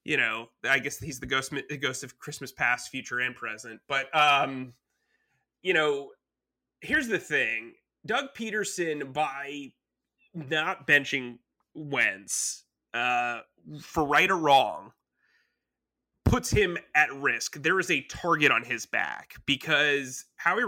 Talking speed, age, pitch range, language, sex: 135 wpm, 30-49, 135-175 Hz, English, male